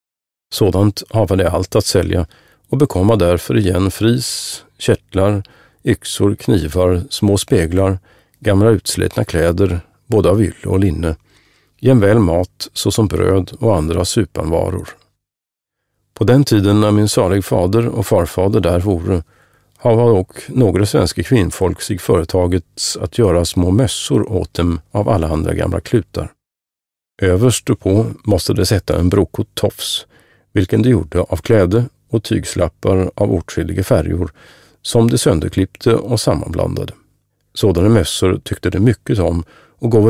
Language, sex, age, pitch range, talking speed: Swedish, male, 50-69, 90-110 Hz, 135 wpm